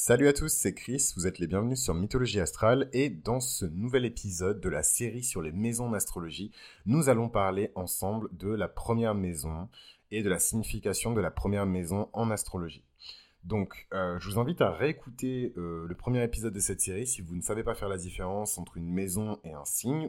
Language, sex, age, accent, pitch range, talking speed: French, male, 30-49, French, 90-120 Hz, 210 wpm